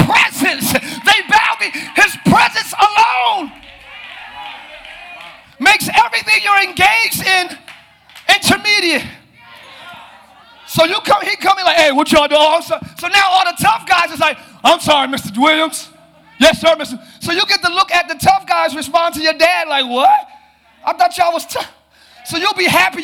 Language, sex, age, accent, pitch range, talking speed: English, male, 30-49, American, 310-390 Hz, 165 wpm